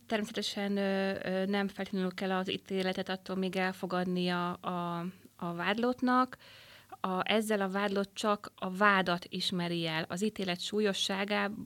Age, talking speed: 30-49, 140 wpm